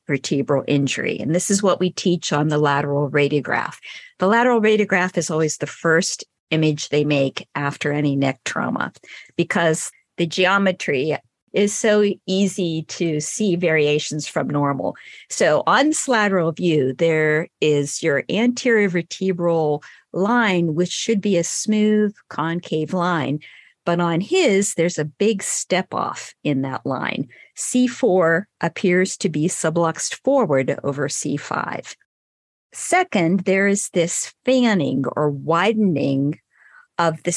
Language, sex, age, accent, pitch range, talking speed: English, female, 50-69, American, 150-200 Hz, 135 wpm